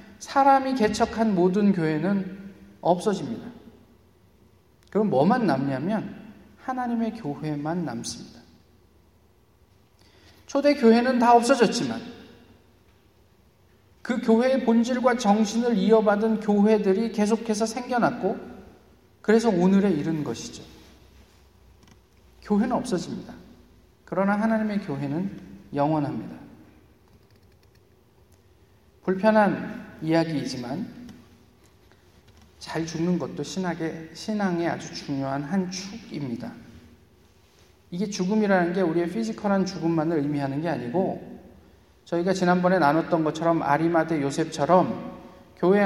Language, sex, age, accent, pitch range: Korean, male, 40-59, native, 145-210 Hz